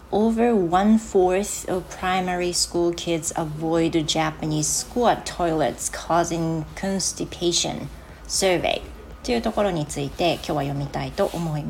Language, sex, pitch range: Japanese, female, 155-195 Hz